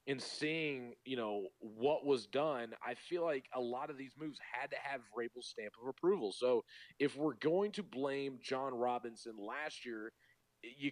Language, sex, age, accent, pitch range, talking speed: English, male, 30-49, American, 125-160 Hz, 180 wpm